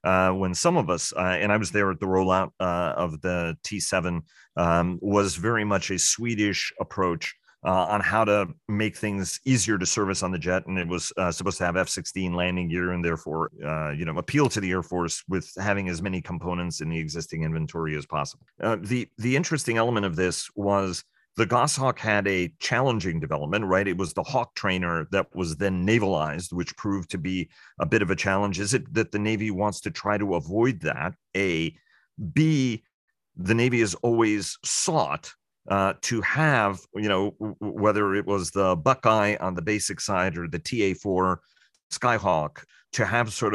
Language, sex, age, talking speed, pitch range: English, male, 40-59, 195 wpm, 90-105 Hz